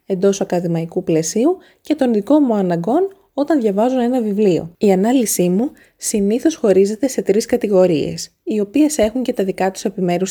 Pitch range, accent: 175-240 Hz, native